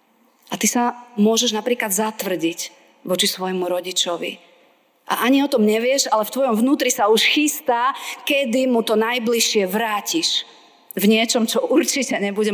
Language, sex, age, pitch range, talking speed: Slovak, female, 30-49, 175-220 Hz, 150 wpm